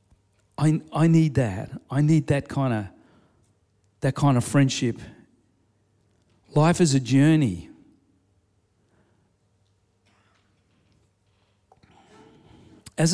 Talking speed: 80 wpm